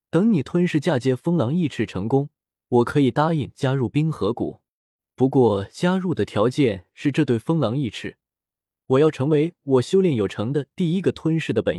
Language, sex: Chinese, male